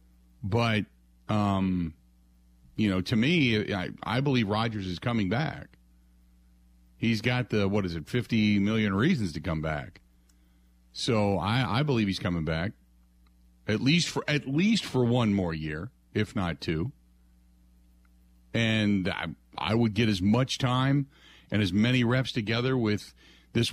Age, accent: 40-59, American